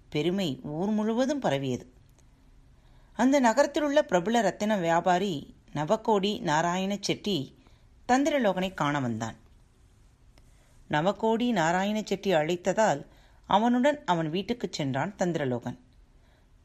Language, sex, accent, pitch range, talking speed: Tamil, female, native, 155-220 Hz, 90 wpm